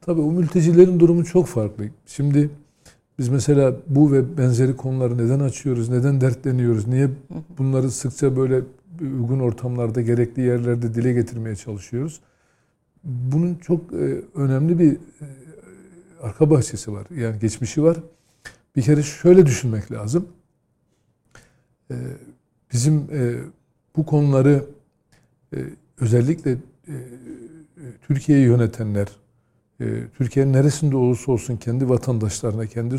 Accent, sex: native, male